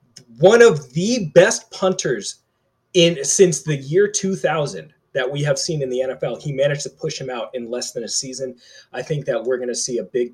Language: English